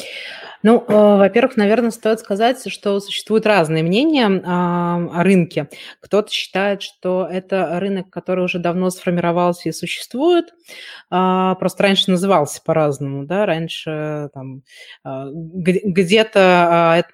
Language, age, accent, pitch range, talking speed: Russian, 20-39, native, 170-205 Hz, 100 wpm